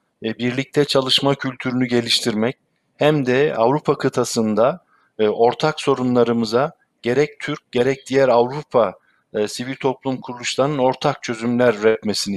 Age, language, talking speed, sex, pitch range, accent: 50-69, Turkish, 100 wpm, male, 115-140 Hz, native